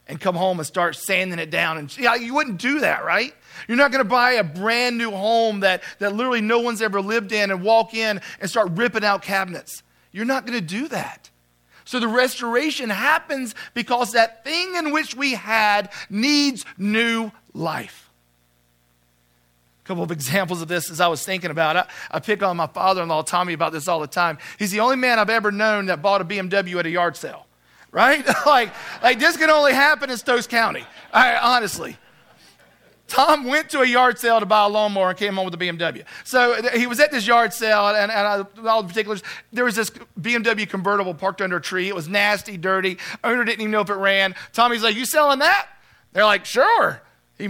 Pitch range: 190-240 Hz